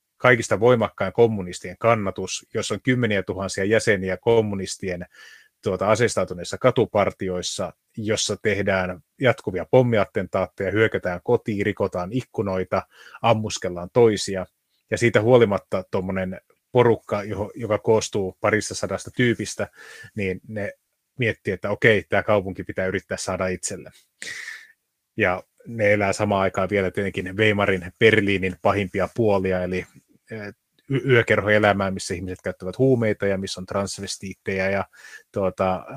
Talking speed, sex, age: 110 wpm, male, 30-49